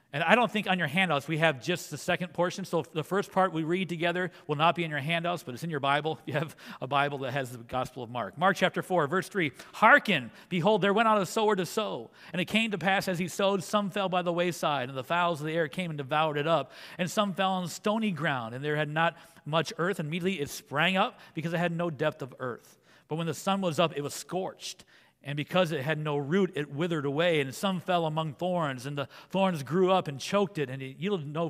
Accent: American